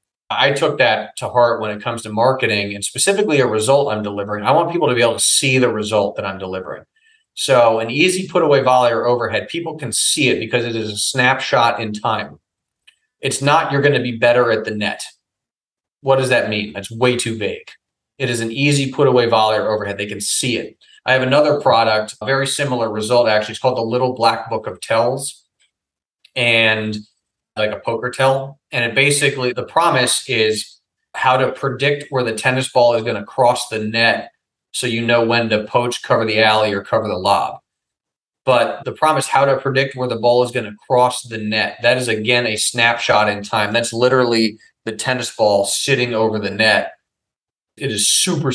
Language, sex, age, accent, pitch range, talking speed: English, male, 30-49, American, 110-135 Hz, 205 wpm